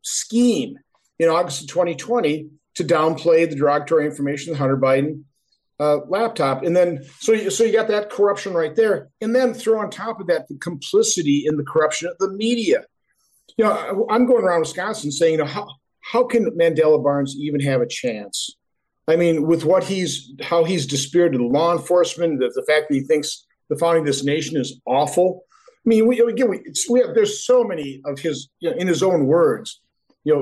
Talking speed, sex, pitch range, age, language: 200 wpm, male, 150-220 Hz, 50-69, English